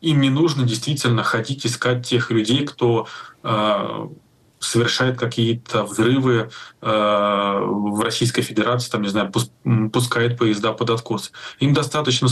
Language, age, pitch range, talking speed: Russian, 20-39, 115-130 Hz, 110 wpm